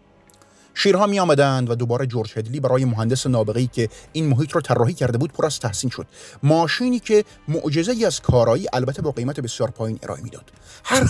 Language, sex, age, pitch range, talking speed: Persian, male, 30-49, 120-160 Hz, 185 wpm